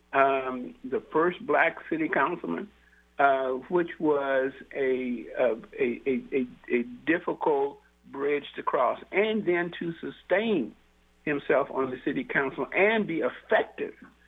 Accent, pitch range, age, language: American, 125-170 Hz, 60-79, English